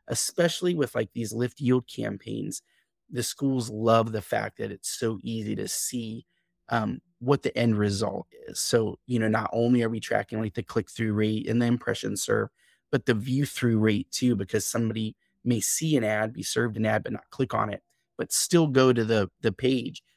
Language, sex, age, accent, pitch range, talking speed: English, male, 30-49, American, 110-135 Hz, 200 wpm